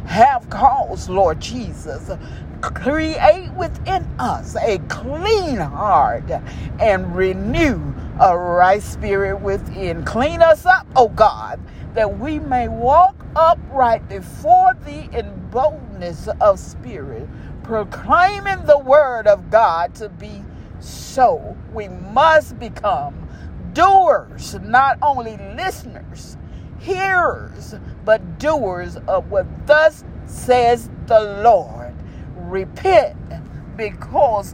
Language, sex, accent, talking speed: English, female, American, 100 wpm